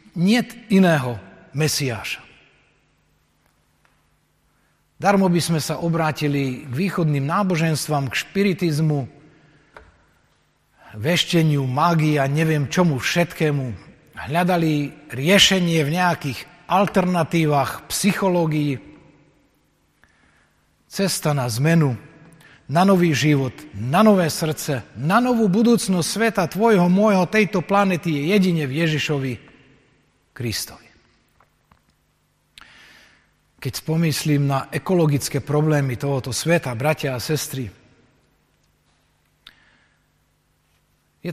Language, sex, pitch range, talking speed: Slovak, male, 140-175 Hz, 85 wpm